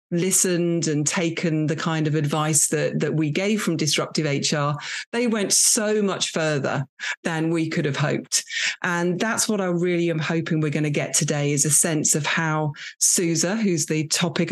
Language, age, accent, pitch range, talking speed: English, 40-59, British, 150-175 Hz, 185 wpm